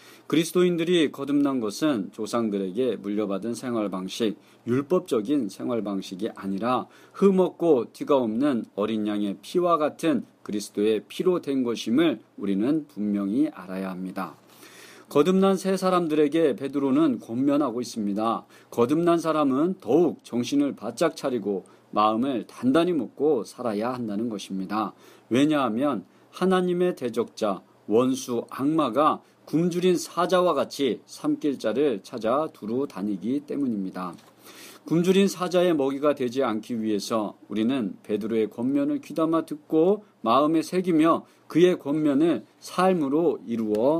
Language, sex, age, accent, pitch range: Korean, male, 40-59, native, 110-180 Hz